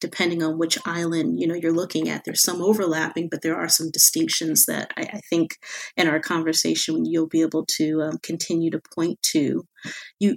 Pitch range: 165-210 Hz